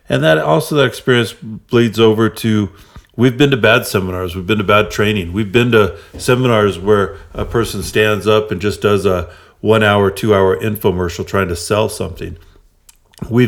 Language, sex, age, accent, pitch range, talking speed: English, male, 50-69, American, 95-110 Hz, 175 wpm